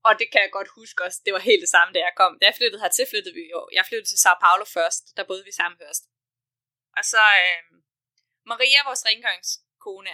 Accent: native